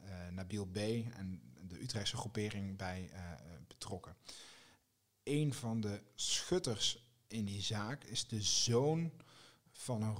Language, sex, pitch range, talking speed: Dutch, male, 105-125 Hz, 130 wpm